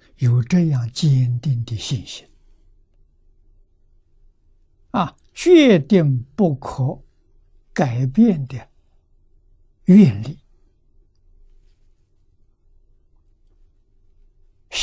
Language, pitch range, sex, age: Chinese, 80-135 Hz, male, 60-79